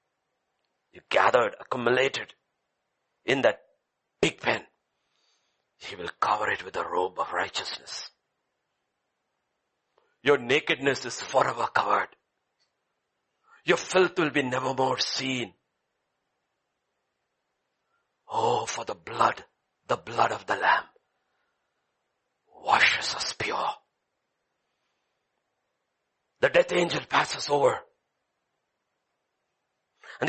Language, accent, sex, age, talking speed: English, Indian, male, 60-79, 90 wpm